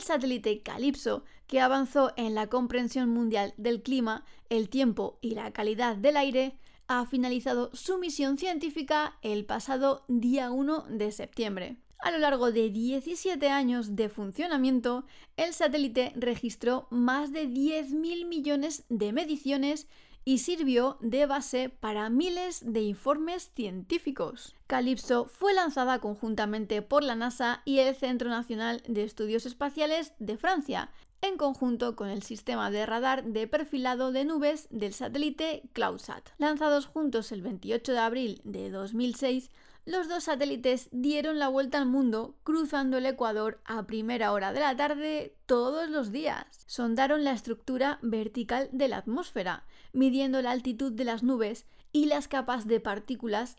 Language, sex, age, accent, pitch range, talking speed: Spanish, female, 30-49, Spanish, 235-290 Hz, 145 wpm